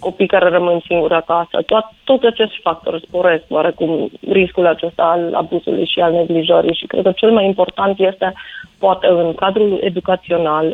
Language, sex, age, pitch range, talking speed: Romanian, female, 30-49, 170-205 Hz, 160 wpm